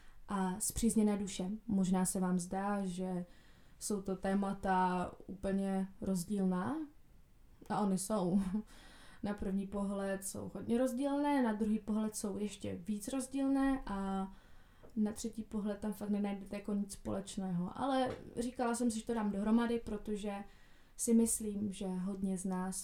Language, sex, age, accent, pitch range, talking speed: Czech, female, 20-39, native, 190-215 Hz, 140 wpm